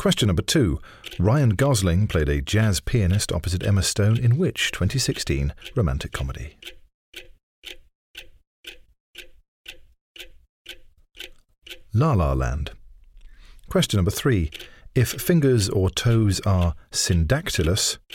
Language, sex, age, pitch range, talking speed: English, male, 40-59, 85-120 Hz, 95 wpm